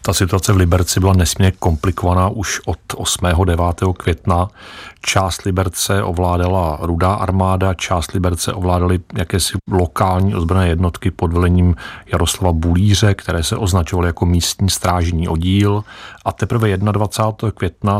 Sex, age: male, 40-59